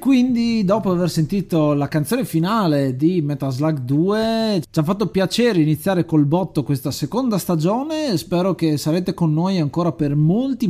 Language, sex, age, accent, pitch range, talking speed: Italian, male, 30-49, native, 145-205 Hz, 170 wpm